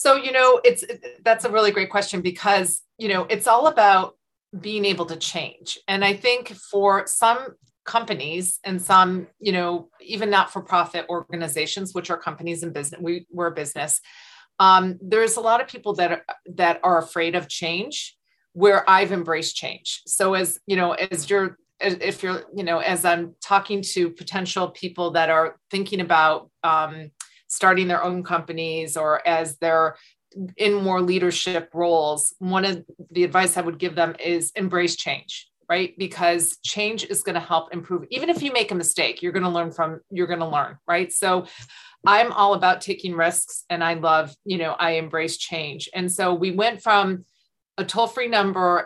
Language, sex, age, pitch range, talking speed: English, female, 40-59, 170-200 Hz, 185 wpm